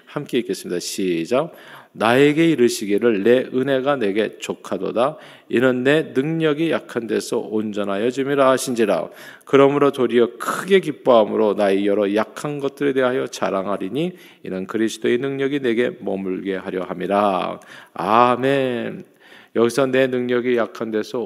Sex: male